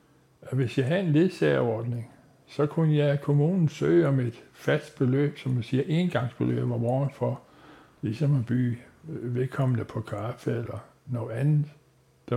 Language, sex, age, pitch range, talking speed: English, male, 60-79, 120-145 Hz, 150 wpm